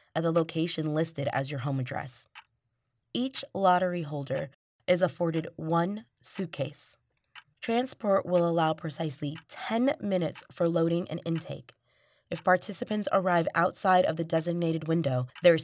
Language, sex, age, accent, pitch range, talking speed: English, female, 20-39, American, 140-180 Hz, 130 wpm